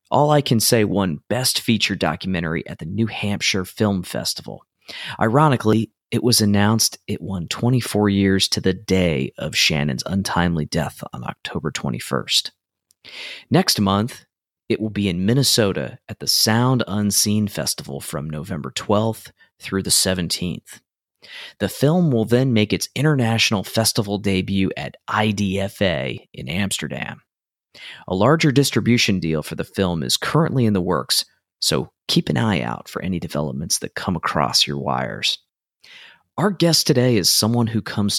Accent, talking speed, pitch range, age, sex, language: American, 150 wpm, 95-120 Hz, 30-49, male, English